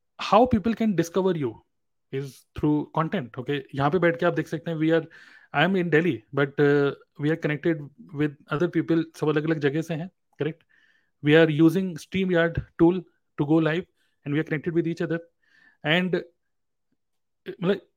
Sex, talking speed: male, 175 wpm